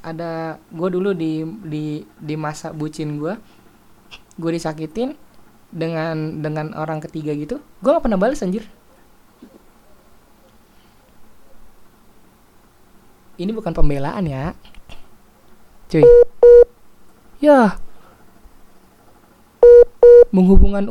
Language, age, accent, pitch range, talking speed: Indonesian, 20-39, native, 155-220 Hz, 80 wpm